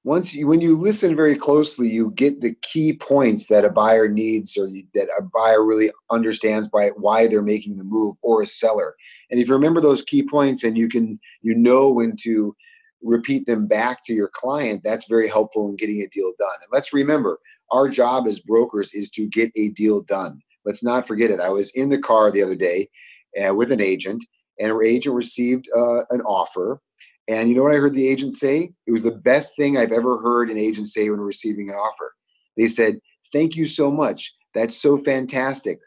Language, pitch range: English, 110-145 Hz